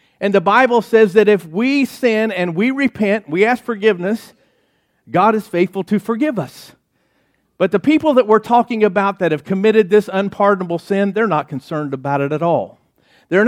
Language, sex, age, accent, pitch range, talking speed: English, male, 50-69, American, 165-220 Hz, 185 wpm